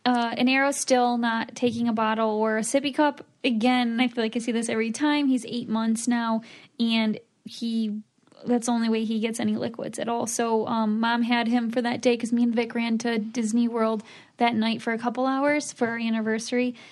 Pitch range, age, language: 230-255 Hz, 10-29, English